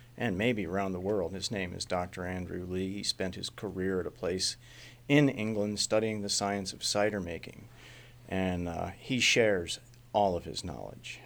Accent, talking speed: American, 180 wpm